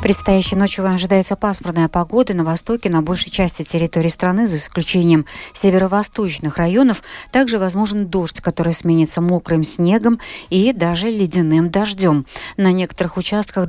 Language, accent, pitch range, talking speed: Russian, native, 160-195 Hz, 130 wpm